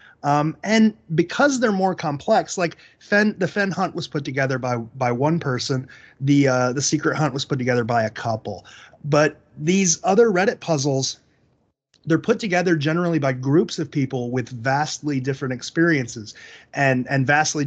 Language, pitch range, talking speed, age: English, 125-165 Hz, 165 wpm, 30-49